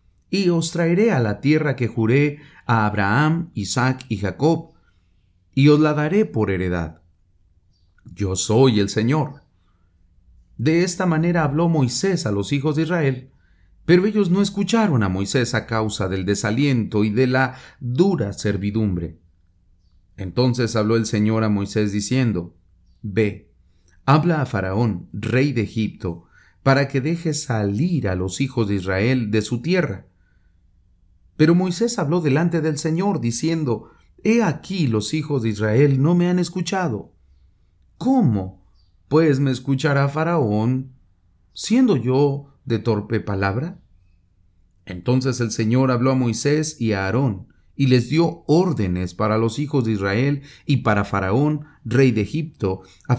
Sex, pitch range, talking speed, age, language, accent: male, 95-150 Hz, 140 wpm, 40-59, English, Mexican